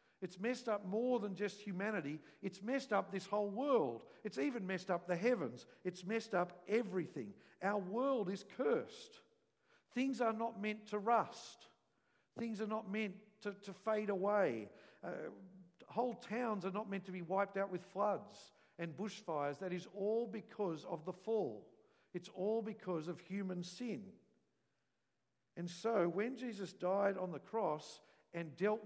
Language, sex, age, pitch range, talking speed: English, male, 50-69, 155-210 Hz, 160 wpm